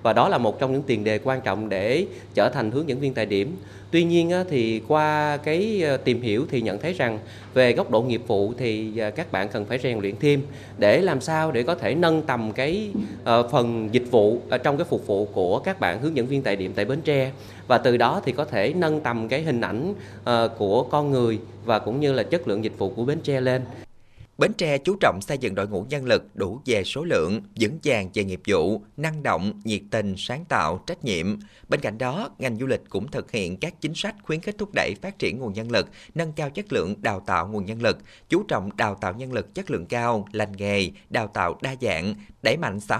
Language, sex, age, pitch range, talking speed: Vietnamese, male, 20-39, 105-145 Hz, 235 wpm